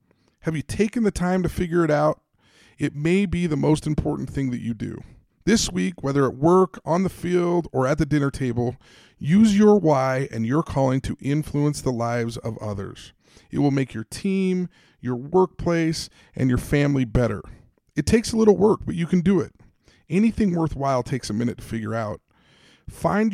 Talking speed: 190 wpm